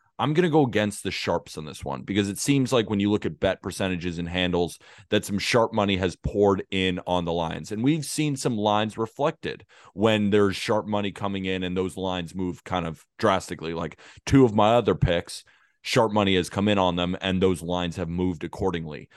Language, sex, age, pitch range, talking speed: English, male, 30-49, 90-110 Hz, 220 wpm